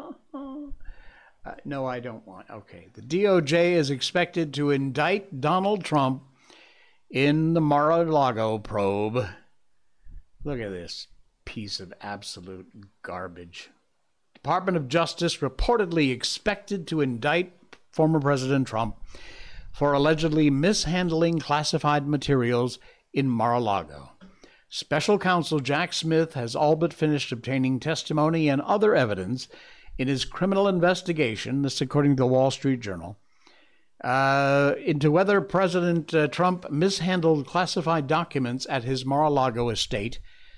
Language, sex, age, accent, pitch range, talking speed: English, male, 60-79, American, 125-165 Hz, 125 wpm